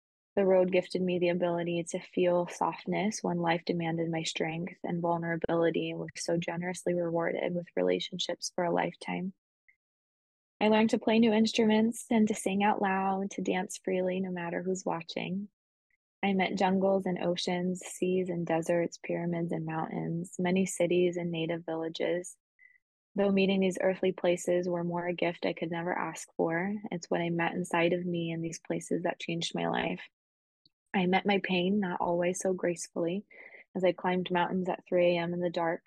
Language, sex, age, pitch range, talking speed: English, female, 20-39, 170-190 Hz, 180 wpm